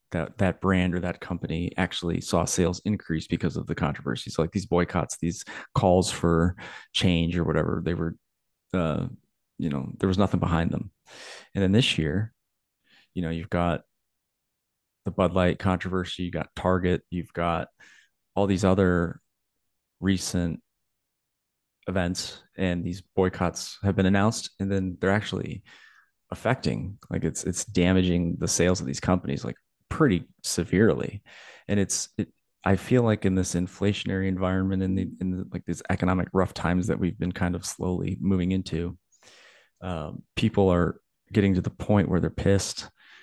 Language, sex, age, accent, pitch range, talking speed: English, male, 20-39, American, 85-95 Hz, 160 wpm